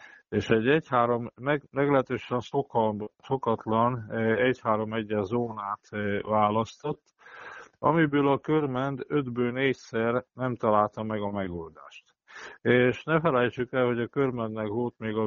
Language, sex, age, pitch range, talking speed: Hungarian, male, 50-69, 105-125 Hz, 115 wpm